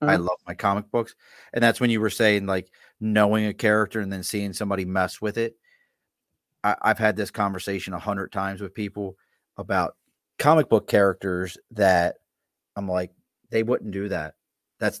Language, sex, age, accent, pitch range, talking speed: English, male, 30-49, American, 95-115 Hz, 175 wpm